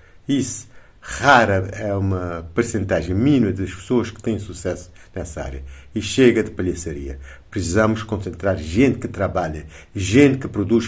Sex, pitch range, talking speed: male, 85-115 Hz, 140 wpm